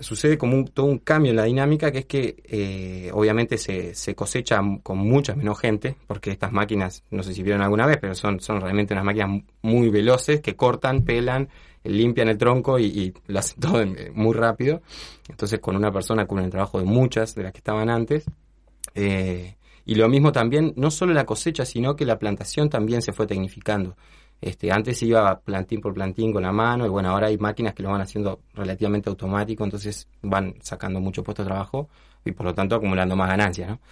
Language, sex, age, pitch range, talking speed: Spanish, male, 20-39, 100-135 Hz, 205 wpm